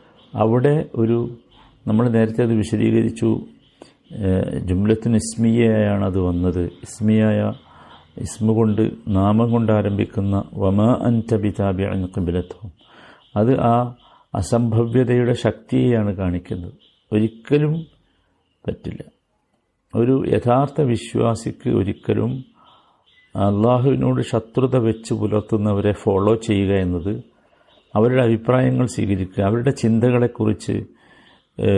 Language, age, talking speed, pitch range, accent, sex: Malayalam, 50-69, 75 wpm, 100-115 Hz, native, male